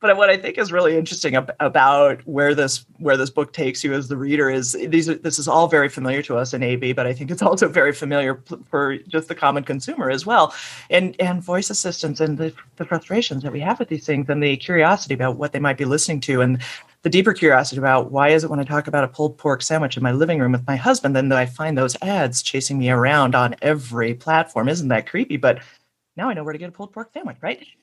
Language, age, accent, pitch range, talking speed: English, 30-49, American, 130-175 Hz, 260 wpm